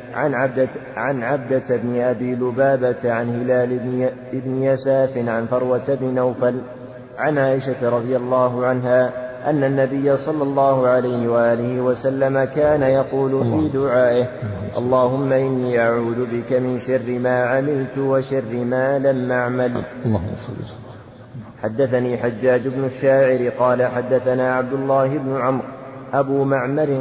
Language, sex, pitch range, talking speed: Arabic, male, 125-135 Hz, 120 wpm